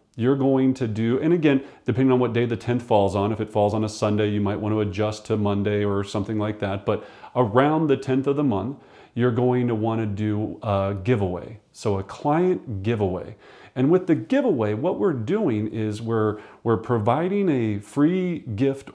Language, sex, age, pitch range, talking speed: English, male, 40-59, 105-135 Hz, 205 wpm